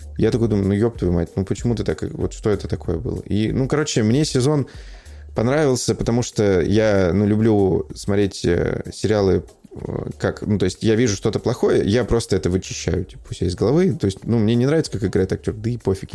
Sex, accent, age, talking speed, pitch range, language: male, native, 20-39, 210 wpm, 95-115 Hz, Russian